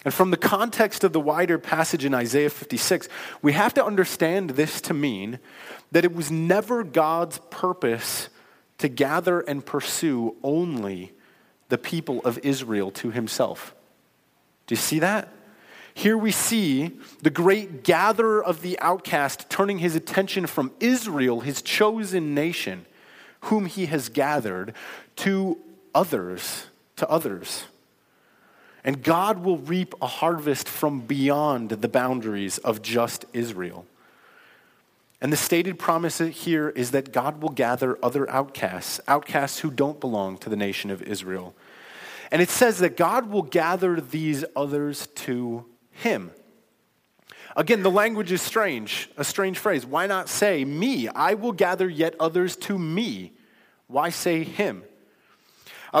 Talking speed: 140 wpm